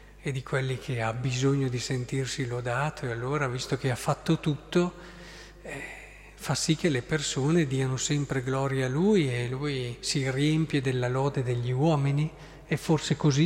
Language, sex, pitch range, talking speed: Italian, male, 130-185 Hz, 170 wpm